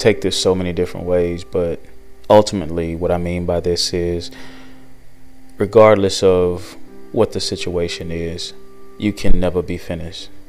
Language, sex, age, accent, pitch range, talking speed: English, male, 20-39, American, 85-95 Hz, 145 wpm